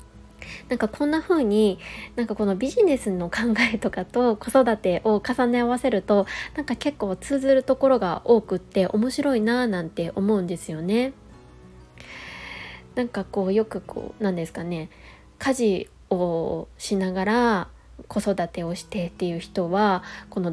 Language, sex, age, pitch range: Japanese, female, 20-39, 180-235 Hz